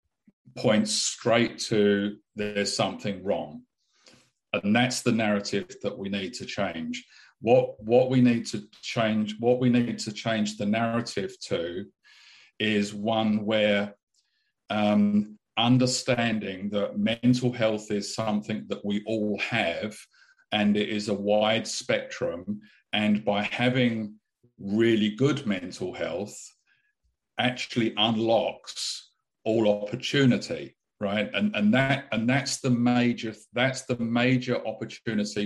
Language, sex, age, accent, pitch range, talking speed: English, male, 50-69, British, 105-120 Hz, 120 wpm